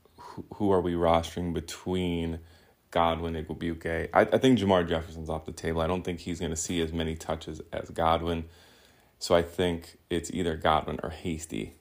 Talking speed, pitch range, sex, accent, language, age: 180 wpm, 80-90 Hz, male, American, English, 20-39